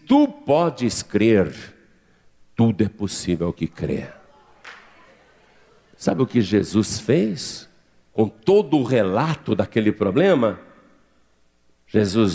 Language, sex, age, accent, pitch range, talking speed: Portuguese, male, 60-79, Brazilian, 85-110 Hz, 95 wpm